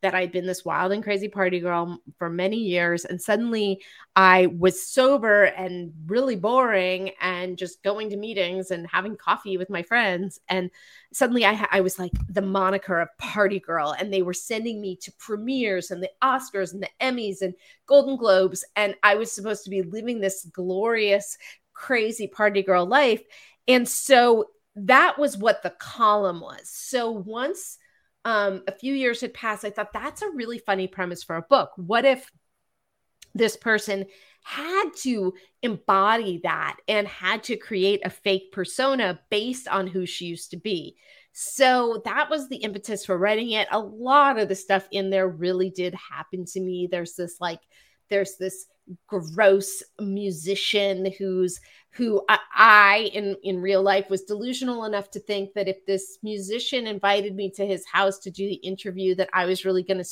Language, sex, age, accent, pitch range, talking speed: English, female, 30-49, American, 185-220 Hz, 175 wpm